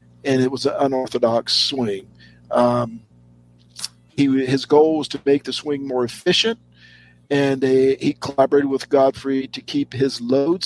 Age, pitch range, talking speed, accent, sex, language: 50-69, 120-150 Hz, 150 wpm, American, male, English